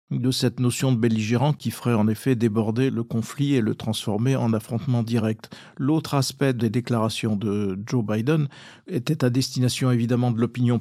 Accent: French